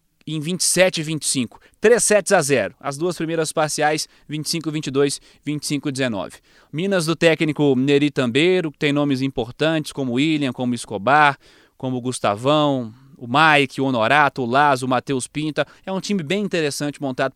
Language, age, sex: Portuguese, 20-39, male